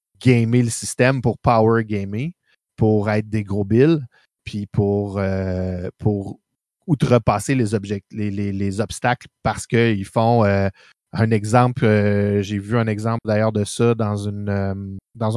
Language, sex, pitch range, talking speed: French, male, 105-120 Hz, 160 wpm